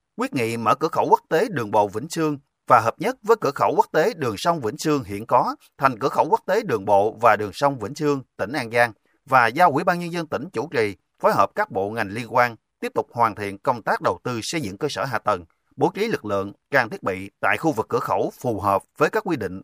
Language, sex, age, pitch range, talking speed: Vietnamese, male, 30-49, 110-160 Hz, 270 wpm